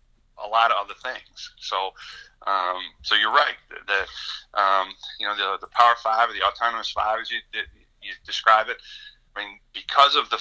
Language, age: English, 40-59